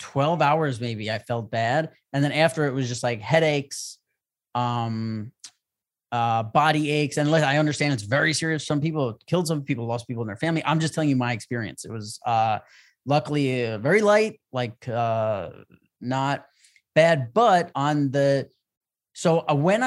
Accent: American